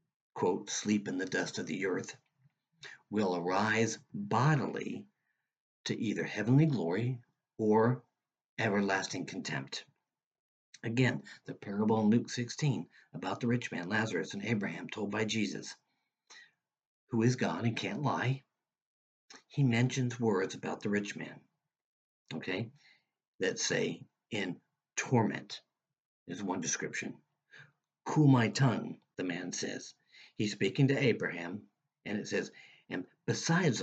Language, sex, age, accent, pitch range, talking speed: English, male, 50-69, American, 105-135 Hz, 125 wpm